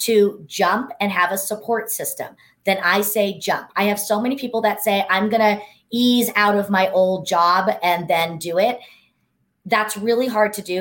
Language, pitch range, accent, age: English, 185-225 Hz, American, 30-49